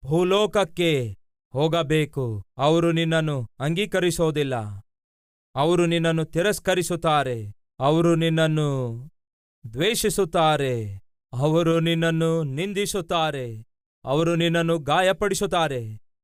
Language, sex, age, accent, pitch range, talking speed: Kannada, male, 40-59, native, 130-175 Hz, 65 wpm